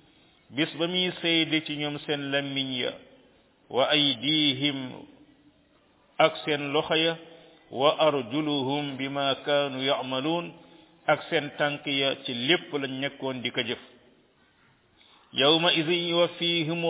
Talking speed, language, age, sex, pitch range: 65 wpm, French, 50-69, male, 135-155 Hz